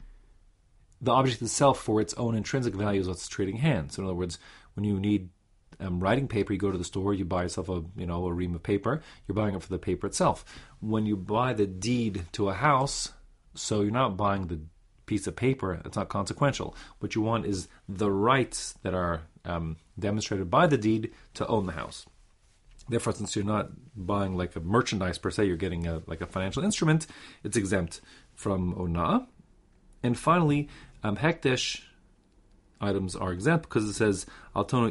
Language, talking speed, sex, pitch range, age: English, 190 wpm, male, 95-125 Hz, 40-59